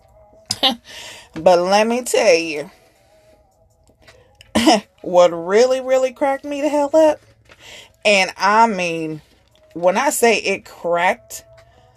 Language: English